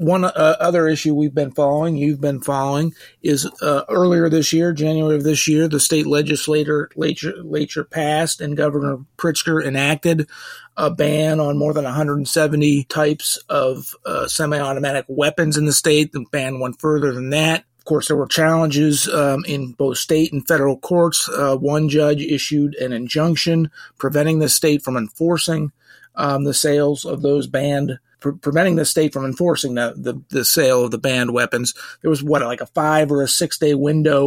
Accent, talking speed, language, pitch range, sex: American, 175 wpm, English, 140-155 Hz, male